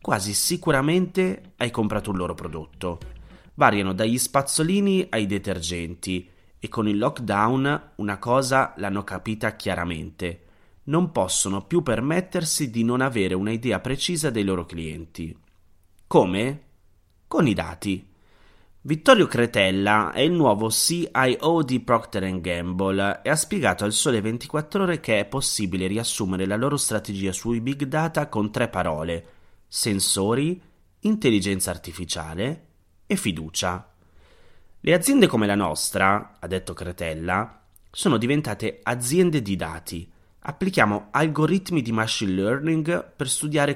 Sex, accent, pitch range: male, native, 90-140 Hz